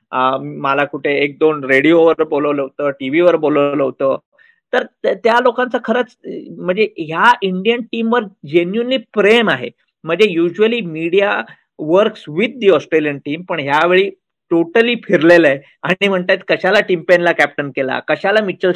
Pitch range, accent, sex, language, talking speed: 155-215 Hz, native, male, Marathi, 140 wpm